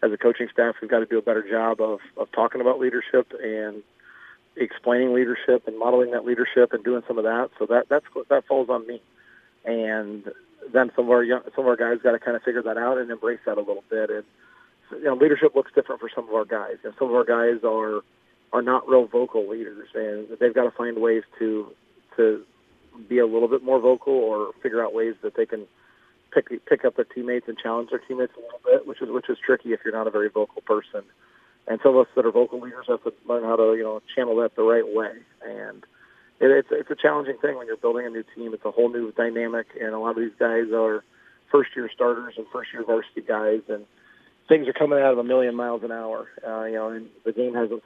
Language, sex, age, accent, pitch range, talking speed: English, male, 40-59, American, 115-170 Hz, 245 wpm